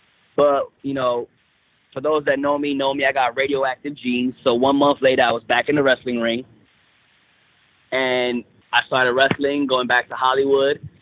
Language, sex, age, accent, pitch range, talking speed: English, male, 20-39, American, 125-155 Hz, 180 wpm